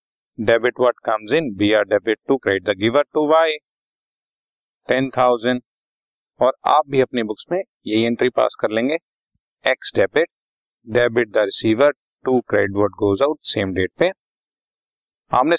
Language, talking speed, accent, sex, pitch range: Hindi, 145 wpm, native, male, 110-160 Hz